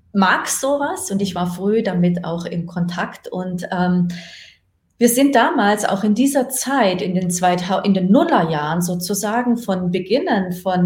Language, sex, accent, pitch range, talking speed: German, female, German, 175-235 Hz, 160 wpm